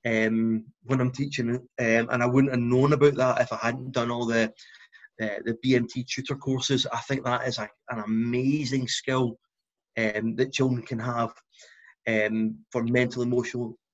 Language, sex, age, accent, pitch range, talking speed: English, male, 30-49, British, 120-145 Hz, 170 wpm